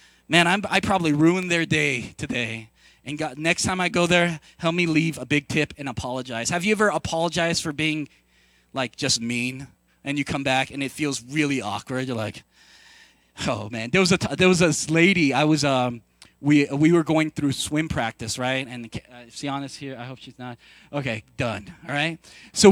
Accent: American